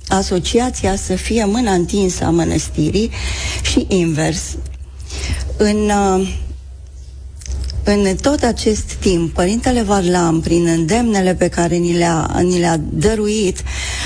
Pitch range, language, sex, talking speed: 165-205 Hz, Romanian, female, 100 wpm